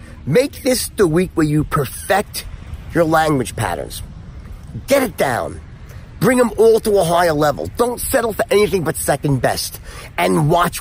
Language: English